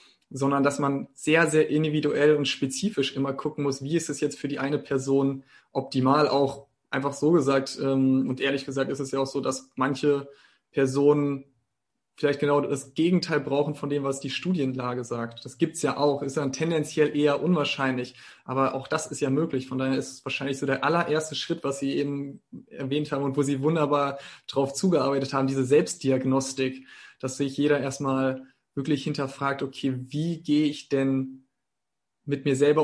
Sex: male